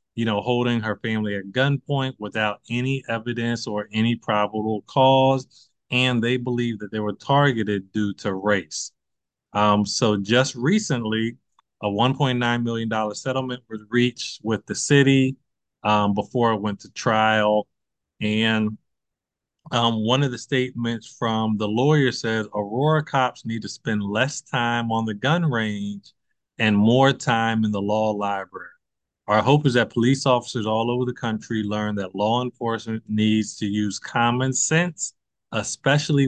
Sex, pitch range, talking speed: male, 105-125 Hz, 155 wpm